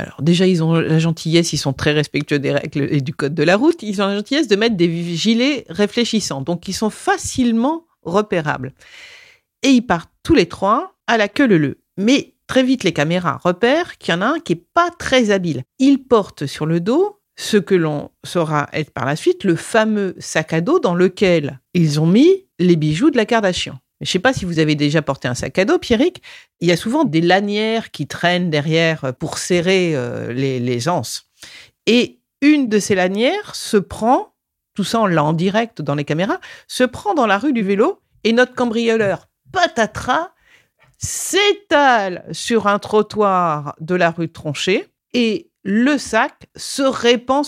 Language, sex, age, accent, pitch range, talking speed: French, female, 50-69, French, 160-245 Hz, 195 wpm